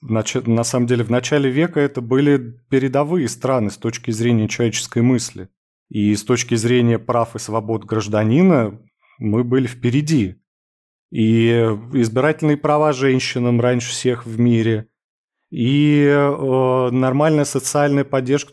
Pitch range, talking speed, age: 115-140 Hz, 125 wpm, 30-49